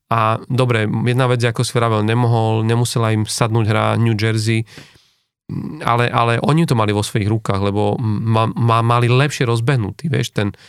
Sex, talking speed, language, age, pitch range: male, 170 wpm, Slovak, 40-59, 110-125 Hz